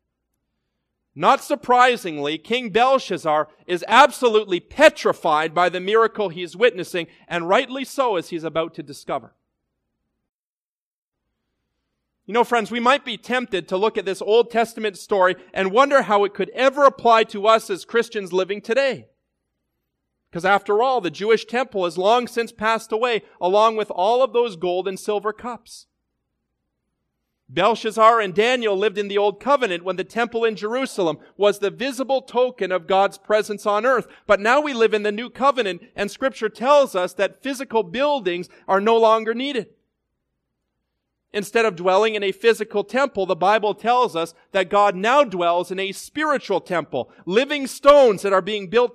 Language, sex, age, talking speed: English, male, 40-59, 165 wpm